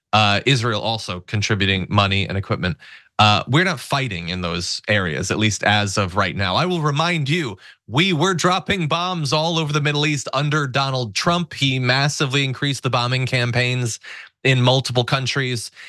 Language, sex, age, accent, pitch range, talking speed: English, male, 30-49, American, 130-195 Hz, 170 wpm